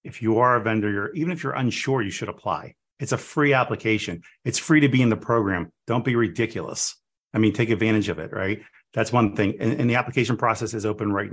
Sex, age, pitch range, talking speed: male, 30-49, 105-120 Hz, 235 wpm